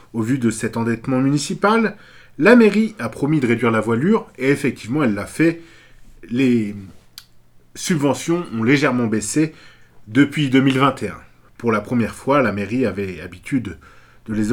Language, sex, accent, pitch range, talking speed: French, male, French, 115-145 Hz, 150 wpm